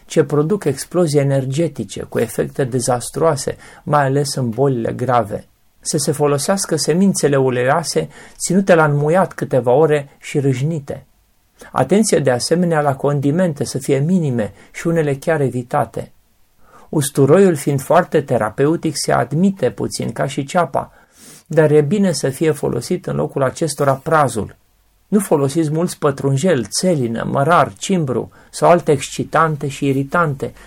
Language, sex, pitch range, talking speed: Romanian, male, 135-165 Hz, 135 wpm